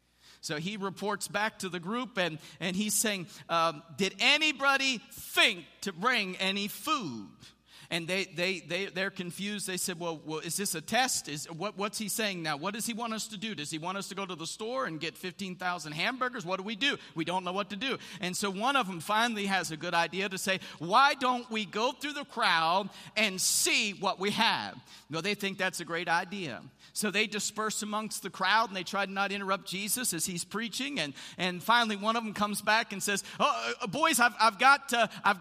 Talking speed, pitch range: 230 wpm, 175-220 Hz